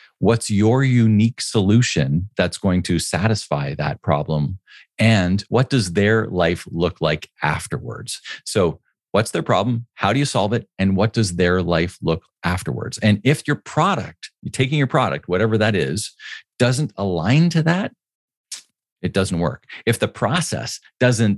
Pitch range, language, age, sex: 90-115 Hz, English, 40-59, male